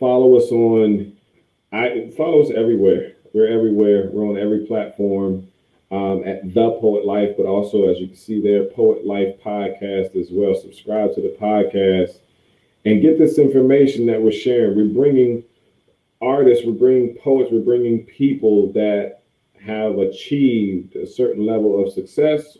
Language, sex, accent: English, male, American